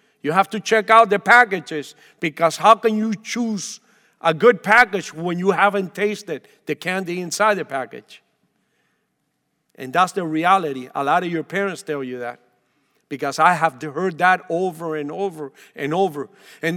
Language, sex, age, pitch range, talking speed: English, male, 50-69, 175-235 Hz, 170 wpm